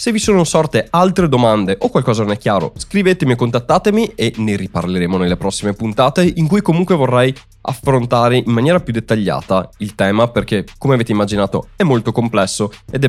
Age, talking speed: 20-39, 185 wpm